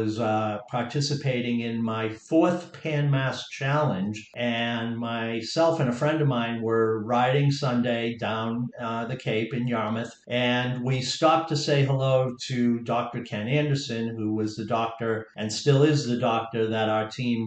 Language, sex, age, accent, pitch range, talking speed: English, male, 50-69, American, 115-140 Hz, 160 wpm